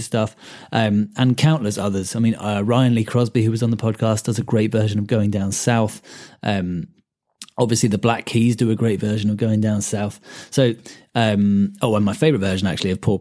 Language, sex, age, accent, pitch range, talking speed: English, male, 30-49, British, 105-130 Hz, 215 wpm